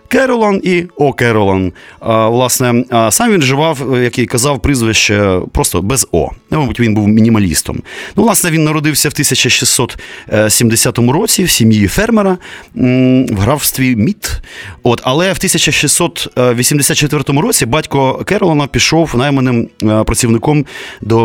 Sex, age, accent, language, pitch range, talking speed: male, 30-49, native, Ukrainian, 105-140 Hz, 125 wpm